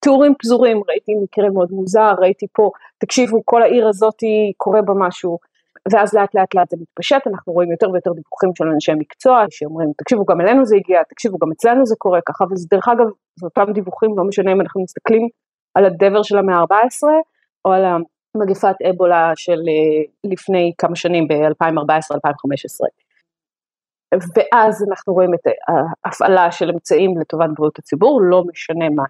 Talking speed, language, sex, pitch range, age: 165 wpm, Hebrew, female, 170-225 Hz, 30-49